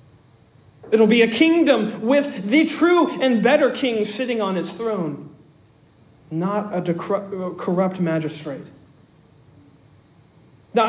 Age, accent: 40-59, American